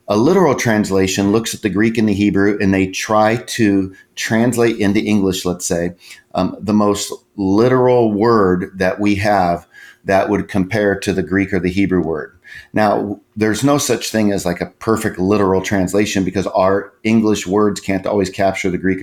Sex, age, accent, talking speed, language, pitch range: male, 40-59, American, 180 wpm, English, 95-110 Hz